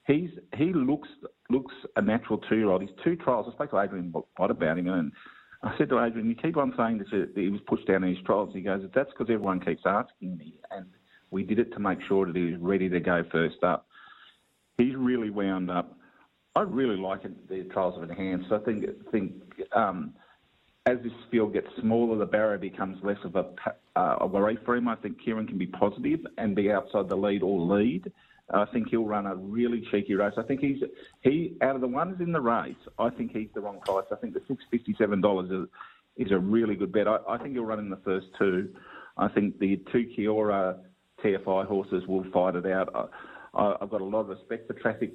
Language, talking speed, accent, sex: English, 225 wpm, Australian, male